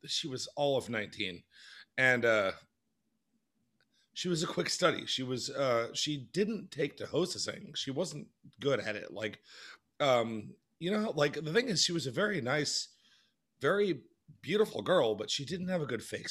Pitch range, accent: 115-150 Hz, American